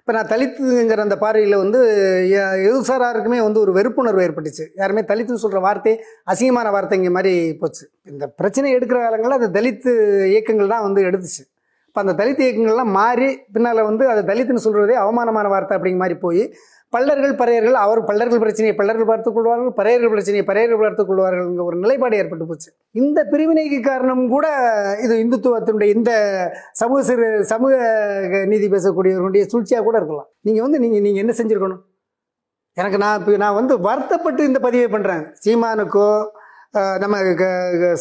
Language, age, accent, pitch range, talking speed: Tamil, 20-39, native, 200-250 Hz, 140 wpm